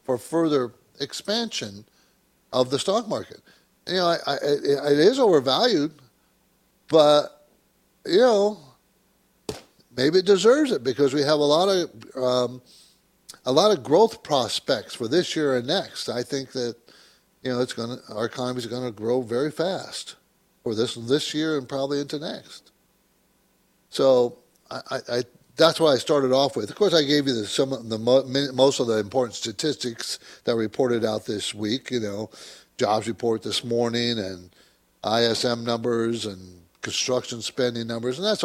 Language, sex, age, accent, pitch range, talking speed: English, male, 60-79, American, 115-150 Hz, 165 wpm